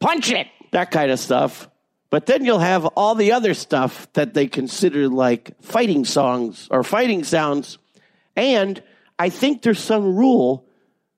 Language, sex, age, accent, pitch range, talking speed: English, male, 50-69, American, 150-220 Hz, 155 wpm